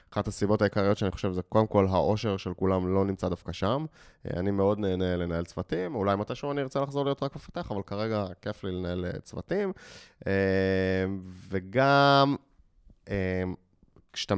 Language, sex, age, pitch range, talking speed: Hebrew, male, 20-39, 95-120 Hz, 145 wpm